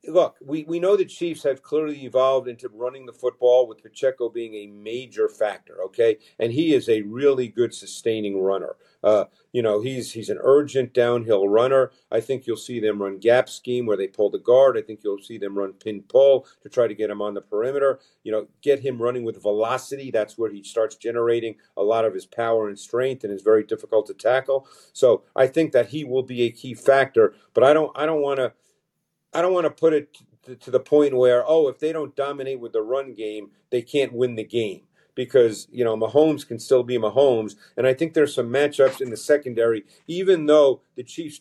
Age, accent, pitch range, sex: 50-69, American, 115-150 Hz, male